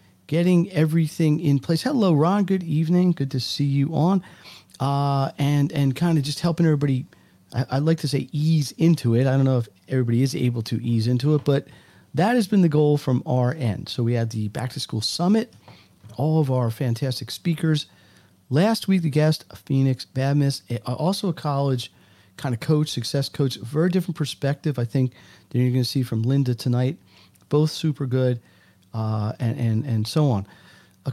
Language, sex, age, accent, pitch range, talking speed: English, male, 40-59, American, 115-155 Hz, 190 wpm